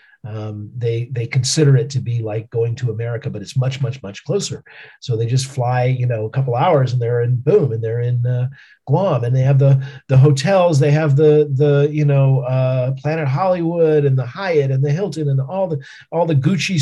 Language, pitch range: English, 120-145 Hz